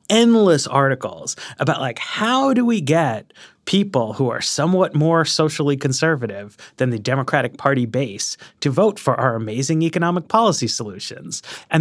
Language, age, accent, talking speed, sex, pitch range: English, 30-49, American, 145 wpm, male, 125-180 Hz